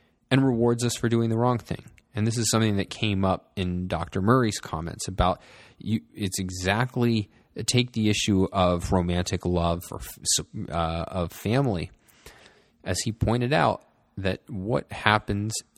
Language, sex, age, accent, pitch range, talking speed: English, male, 20-39, American, 90-115 Hz, 150 wpm